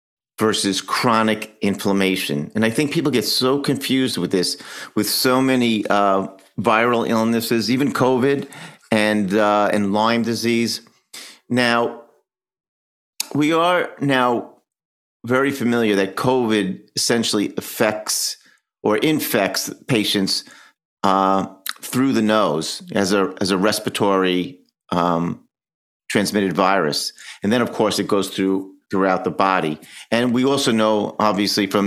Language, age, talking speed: English, 50-69, 125 wpm